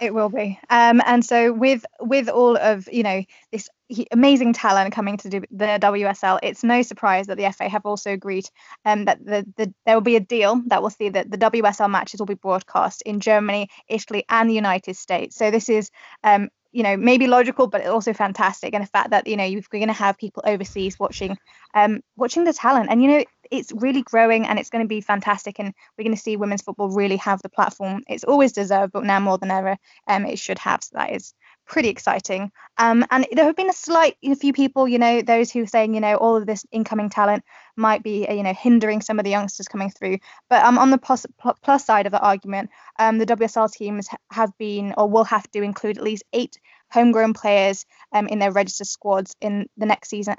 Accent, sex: British, female